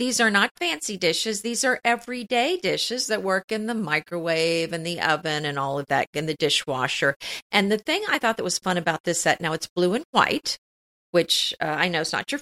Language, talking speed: English, 225 wpm